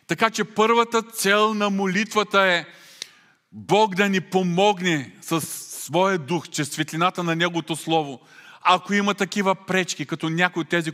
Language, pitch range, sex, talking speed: Bulgarian, 155-205 Hz, male, 150 wpm